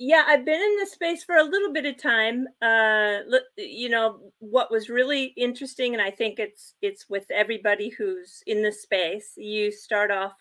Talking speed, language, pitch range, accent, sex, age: 190 wpm, English, 195-265 Hz, American, female, 40-59